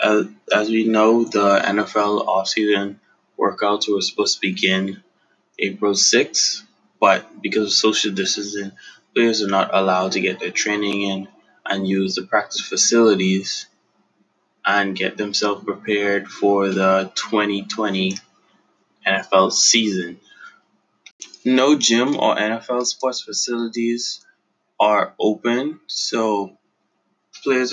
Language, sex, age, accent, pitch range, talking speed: English, male, 20-39, American, 100-115 Hz, 115 wpm